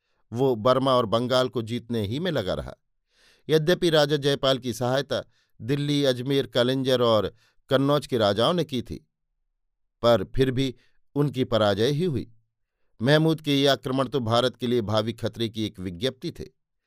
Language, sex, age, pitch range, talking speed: Hindi, male, 50-69, 115-135 Hz, 165 wpm